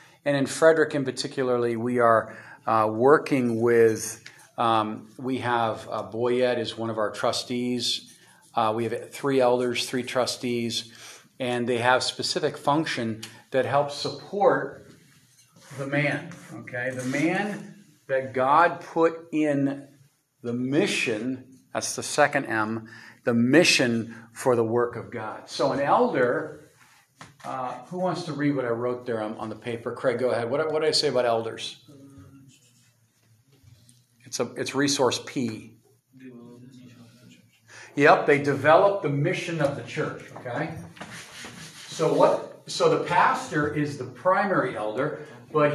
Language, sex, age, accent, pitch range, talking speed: English, male, 50-69, American, 120-150 Hz, 140 wpm